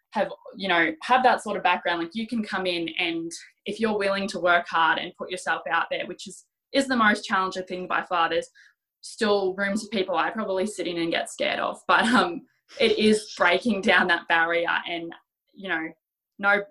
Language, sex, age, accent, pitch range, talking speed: English, female, 20-39, Australian, 175-215 Hz, 210 wpm